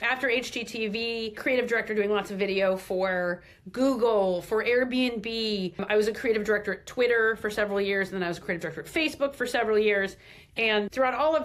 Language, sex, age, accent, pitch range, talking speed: English, female, 40-59, American, 195-245 Hz, 200 wpm